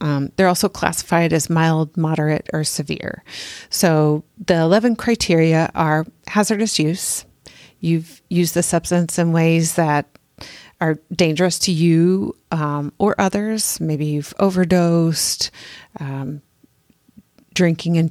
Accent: American